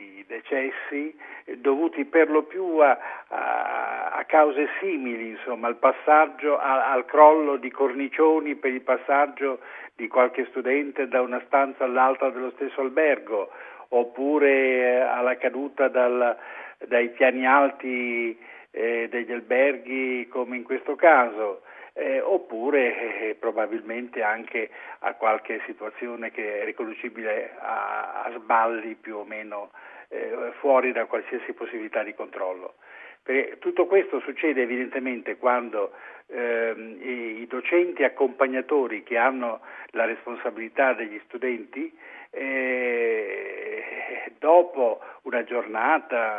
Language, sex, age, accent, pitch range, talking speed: Italian, male, 50-69, native, 120-165 Hz, 120 wpm